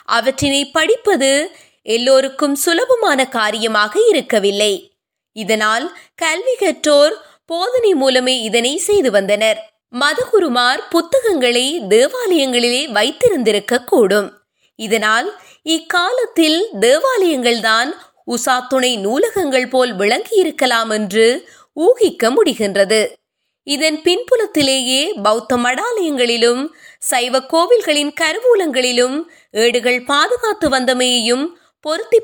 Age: 20-39